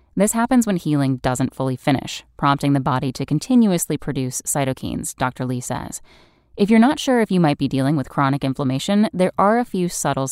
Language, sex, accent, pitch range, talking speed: English, female, American, 135-190 Hz, 200 wpm